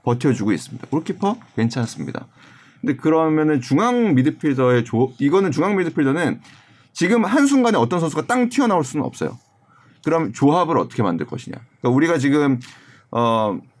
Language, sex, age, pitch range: Korean, male, 30-49, 115-160 Hz